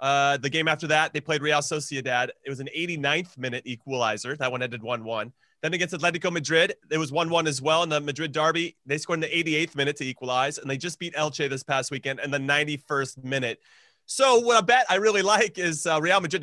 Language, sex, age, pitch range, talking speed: English, male, 30-49, 135-170 Hz, 225 wpm